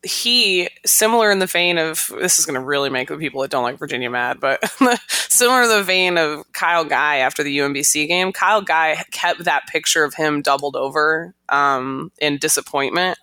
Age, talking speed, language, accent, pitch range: 20-39, 195 wpm, English, American, 140-170 Hz